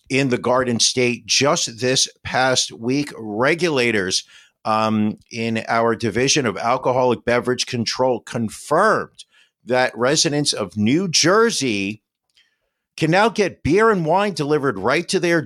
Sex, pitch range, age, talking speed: male, 110-155 Hz, 50-69, 130 wpm